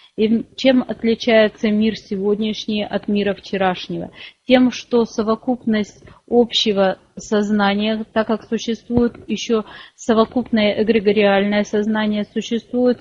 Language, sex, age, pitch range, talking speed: English, female, 30-49, 200-225 Hz, 95 wpm